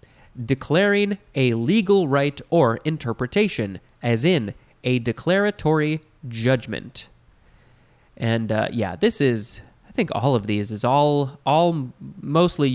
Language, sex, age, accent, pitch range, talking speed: English, male, 20-39, American, 115-175 Hz, 120 wpm